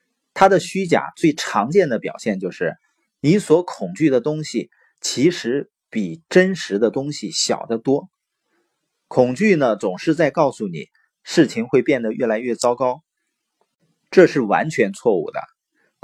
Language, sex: Chinese, male